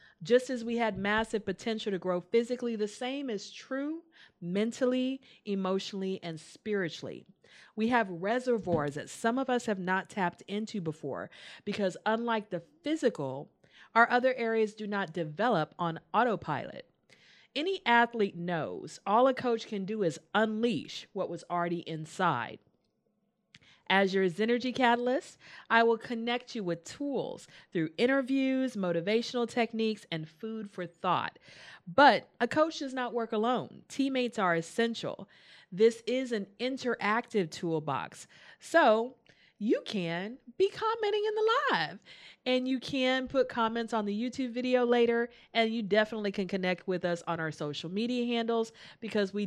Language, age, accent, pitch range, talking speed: English, 40-59, American, 180-240 Hz, 145 wpm